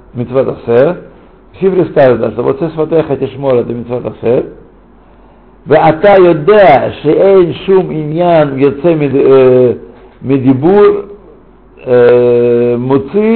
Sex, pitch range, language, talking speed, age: male, 125-165 Hz, Russian, 70 wpm, 60-79